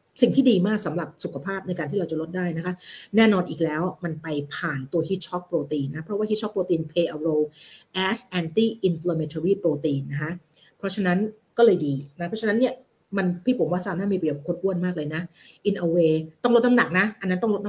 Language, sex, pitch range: Thai, female, 160-220 Hz